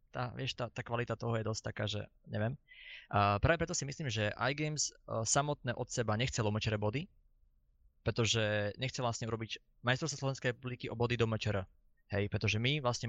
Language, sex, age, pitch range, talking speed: Slovak, male, 20-39, 105-125 Hz, 180 wpm